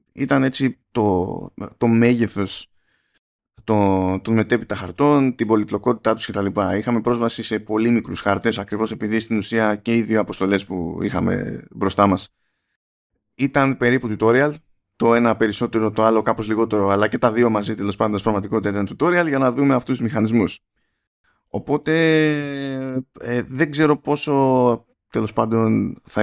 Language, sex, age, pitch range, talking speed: Greek, male, 20-39, 100-125 Hz, 155 wpm